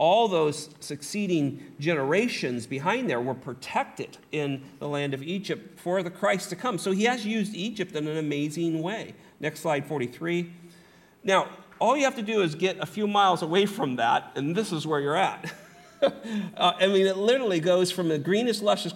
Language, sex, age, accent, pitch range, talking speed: English, male, 40-59, American, 145-185 Hz, 190 wpm